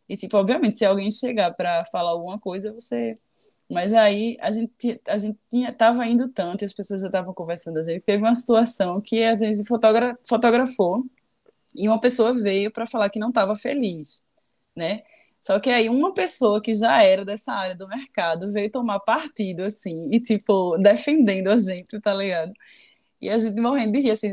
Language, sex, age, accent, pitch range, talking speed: Portuguese, female, 20-39, Brazilian, 170-225 Hz, 190 wpm